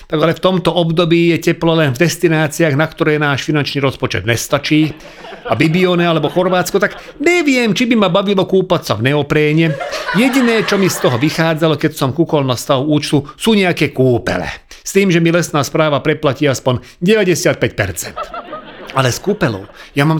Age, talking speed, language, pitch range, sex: 40-59, 170 wpm, Slovak, 140-180 Hz, male